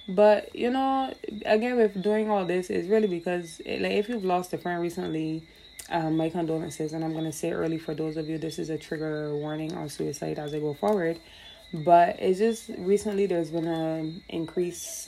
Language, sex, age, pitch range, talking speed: English, female, 20-39, 160-200 Hz, 205 wpm